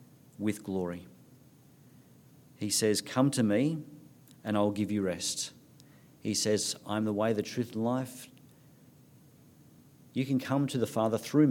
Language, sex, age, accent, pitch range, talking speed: English, male, 50-69, Australian, 100-135 Hz, 145 wpm